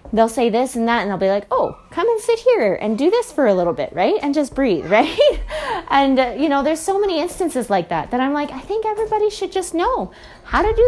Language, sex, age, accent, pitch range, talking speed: English, female, 20-39, American, 200-285 Hz, 265 wpm